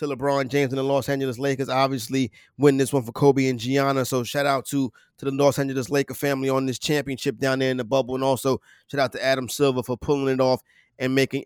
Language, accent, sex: English, American, male